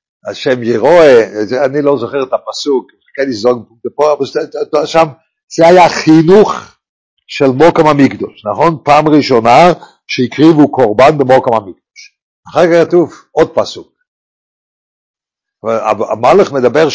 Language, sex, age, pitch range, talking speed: English, male, 50-69, 130-175 Hz, 100 wpm